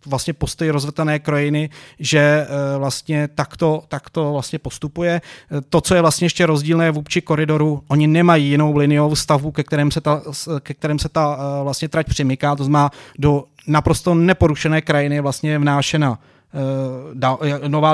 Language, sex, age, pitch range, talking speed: Czech, male, 30-49, 145-160 Hz, 150 wpm